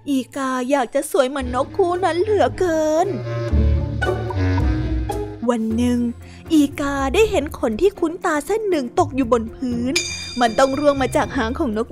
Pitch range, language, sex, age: 255-335 Hz, Thai, female, 20-39